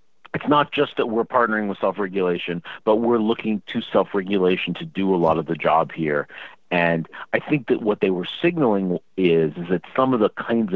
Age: 40-59